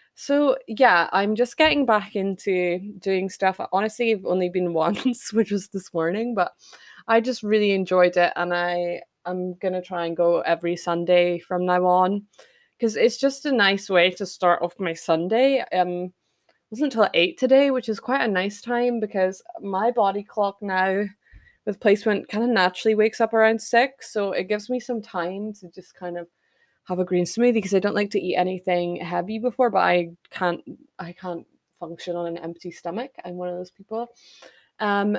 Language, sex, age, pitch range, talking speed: English, female, 20-39, 180-225 Hz, 190 wpm